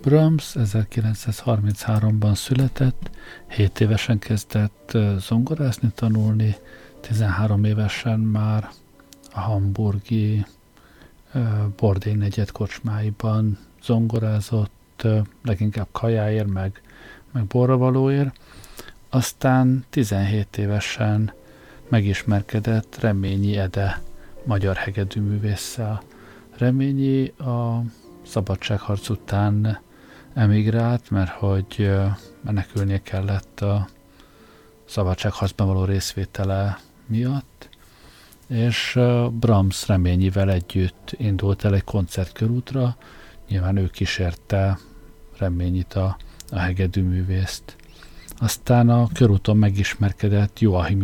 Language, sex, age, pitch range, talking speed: Hungarian, male, 50-69, 100-115 Hz, 75 wpm